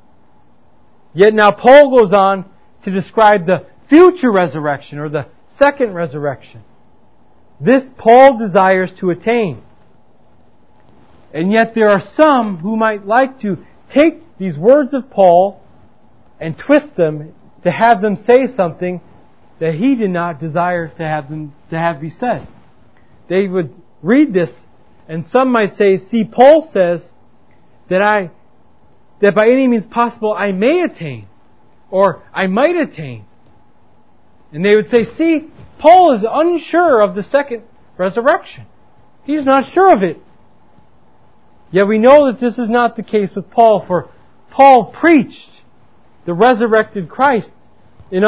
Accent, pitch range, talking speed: American, 175-245 Hz, 140 wpm